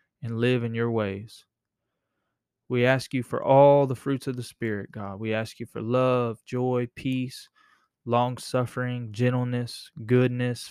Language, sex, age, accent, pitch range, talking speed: English, male, 20-39, American, 115-130 Hz, 150 wpm